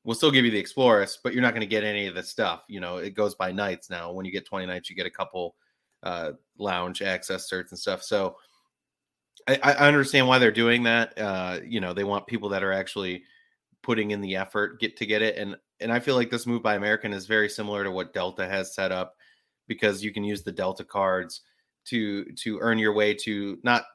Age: 30-49